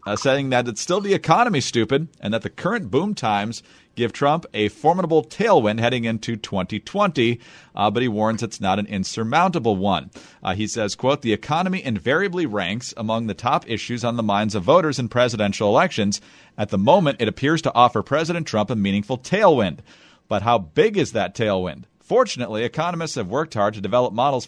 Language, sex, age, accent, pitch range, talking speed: English, male, 40-59, American, 105-140 Hz, 190 wpm